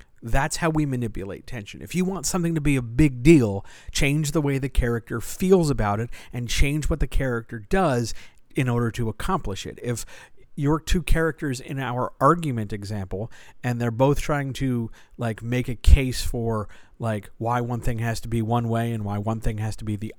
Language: English